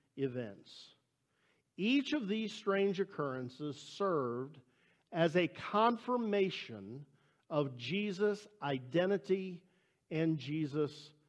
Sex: male